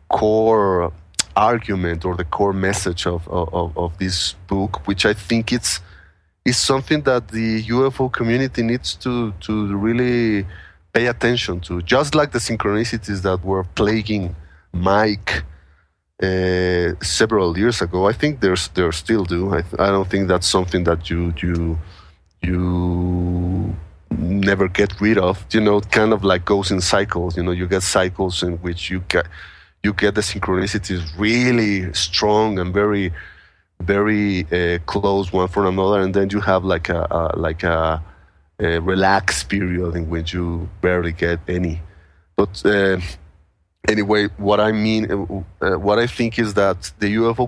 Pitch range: 85-105 Hz